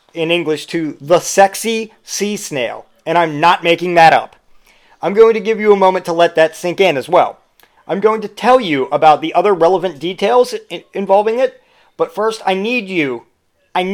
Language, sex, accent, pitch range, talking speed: English, male, American, 160-215 Hz, 195 wpm